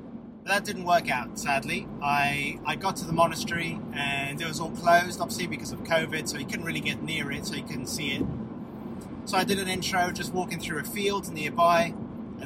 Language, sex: English, male